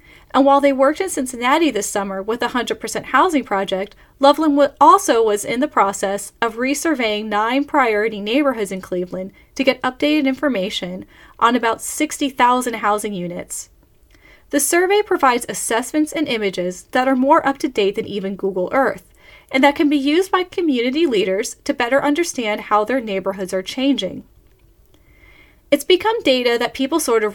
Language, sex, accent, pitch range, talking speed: English, female, American, 205-290 Hz, 160 wpm